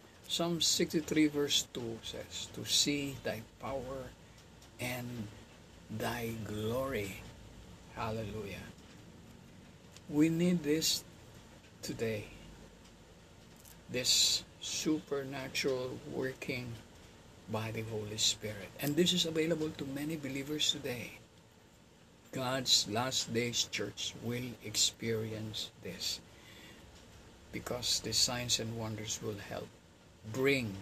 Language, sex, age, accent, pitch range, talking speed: Filipino, male, 50-69, native, 105-135 Hz, 90 wpm